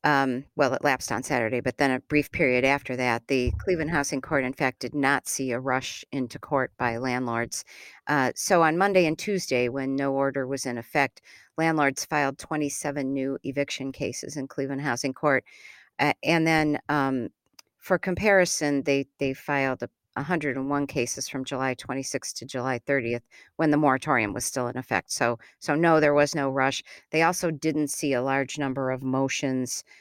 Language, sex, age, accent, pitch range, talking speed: English, female, 50-69, American, 130-145 Hz, 185 wpm